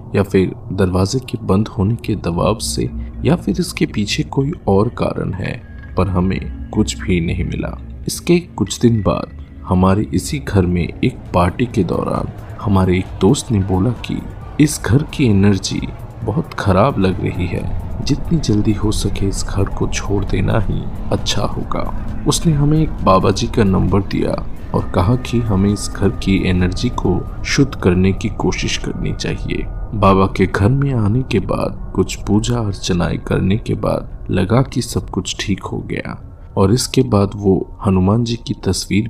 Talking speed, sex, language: 175 wpm, male, Hindi